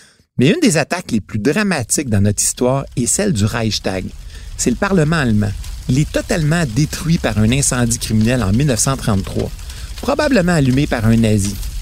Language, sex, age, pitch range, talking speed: French, male, 60-79, 100-150 Hz, 170 wpm